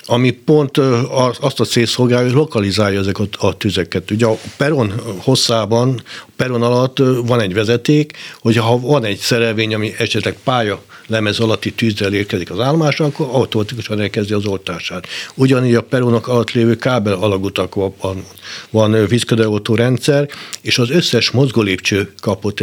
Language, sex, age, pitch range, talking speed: Hungarian, male, 60-79, 105-125 Hz, 140 wpm